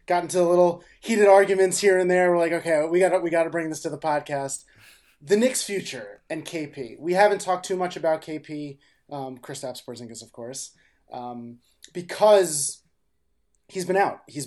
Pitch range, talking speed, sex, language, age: 145-190 Hz, 185 wpm, male, English, 30-49